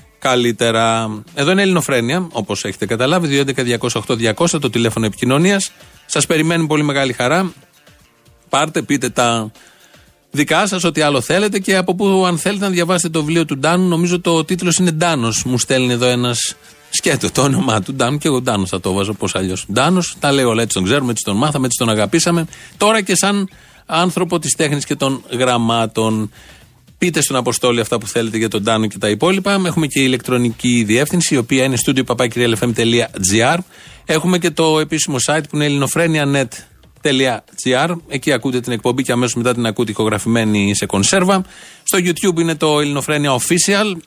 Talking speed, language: 175 wpm, Greek